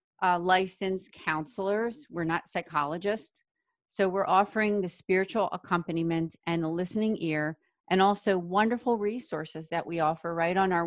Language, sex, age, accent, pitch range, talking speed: English, female, 40-59, American, 160-195 Hz, 145 wpm